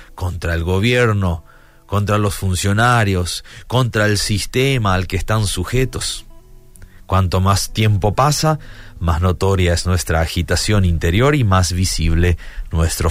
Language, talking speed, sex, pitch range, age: Spanish, 125 wpm, male, 85-110 Hz, 40-59